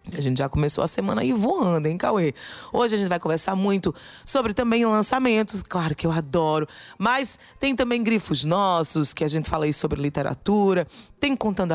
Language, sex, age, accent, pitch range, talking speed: Portuguese, female, 20-39, Brazilian, 170-240 Hz, 190 wpm